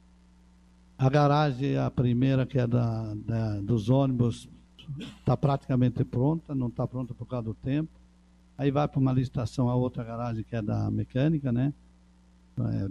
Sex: male